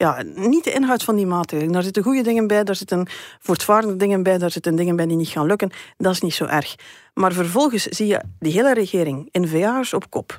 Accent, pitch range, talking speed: Dutch, 180-230 Hz, 235 wpm